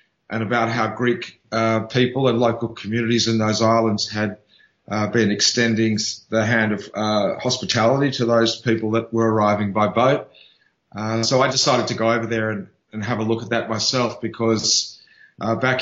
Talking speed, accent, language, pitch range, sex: 180 wpm, Australian, English, 110-120 Hz, male